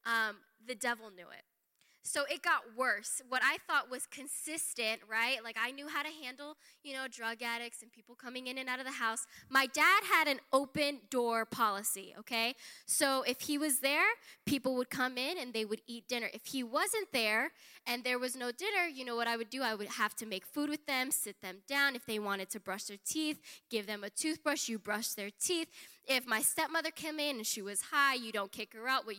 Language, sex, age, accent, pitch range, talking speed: English, female, 10-29, American, 230-295 Hz, 230 wpm